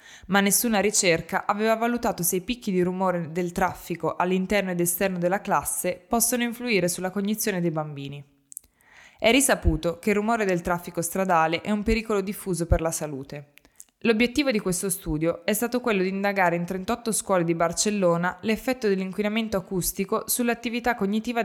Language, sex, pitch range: Italian, female, 175-220 Hz